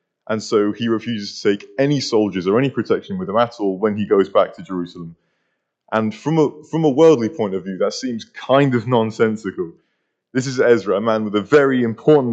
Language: English